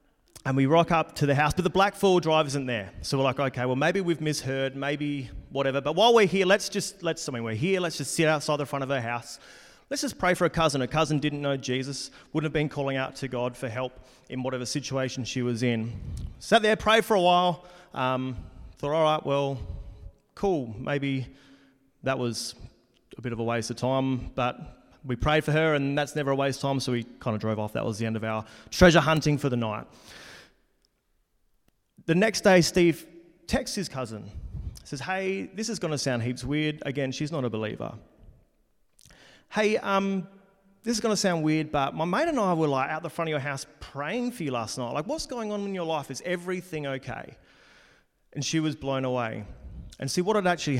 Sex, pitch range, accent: male, 125-170 Hz, Australian